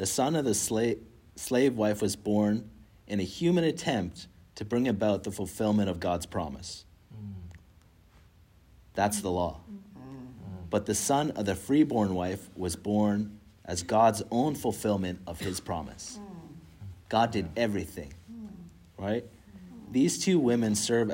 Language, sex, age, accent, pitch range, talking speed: English, male, 40-59, American, 90-110 Hz, 135 wpm